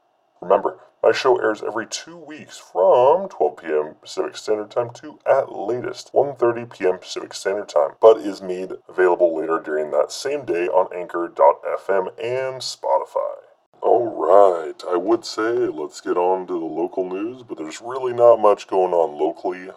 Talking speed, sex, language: 160 wpm, female, English